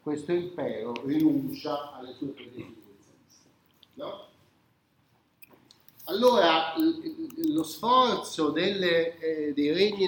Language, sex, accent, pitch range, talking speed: Italian, male, native, 130-200 Hz, 75 wpm